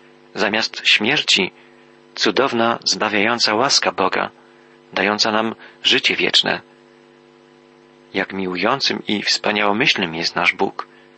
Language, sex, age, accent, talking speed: Polish, male, 40-59, native, 90 wpm